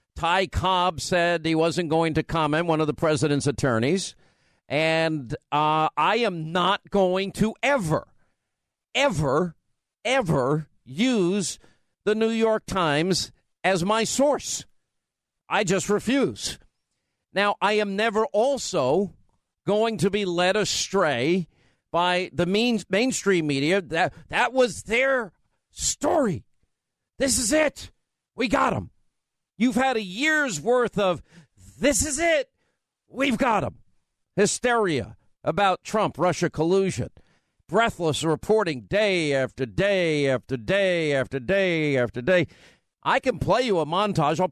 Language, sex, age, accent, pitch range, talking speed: English, male, 50-69, American, 155-205 Hz, 130 wpm